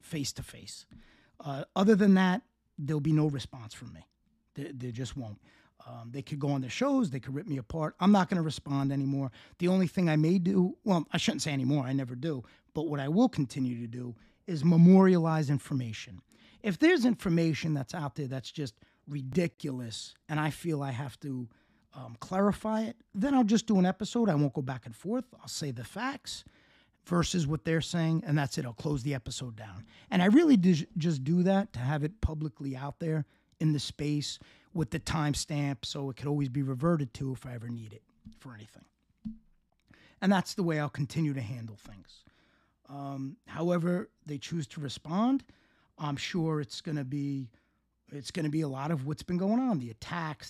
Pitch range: 135-175 Hz